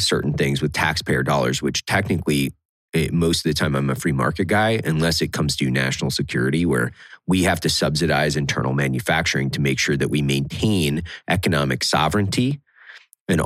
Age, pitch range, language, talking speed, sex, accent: 30-49, 75-100 Hz, English, 170 wpm, male, American